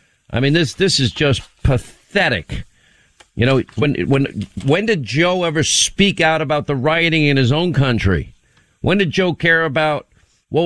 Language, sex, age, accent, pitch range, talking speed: English, male, 50-69, American, 125-160 Hz, 170 wpm